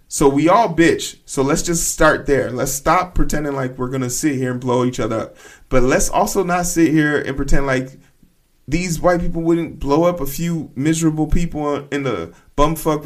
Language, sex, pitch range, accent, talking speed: English, male, 130-165 Hz, American, 205 wpm